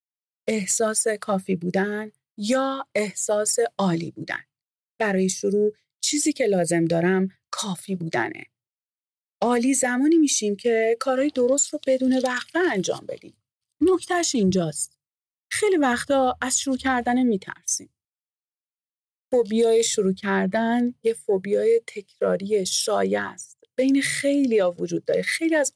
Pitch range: 210-295 Hz